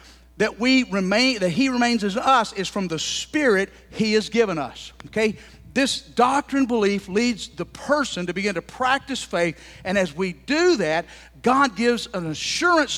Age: 50-69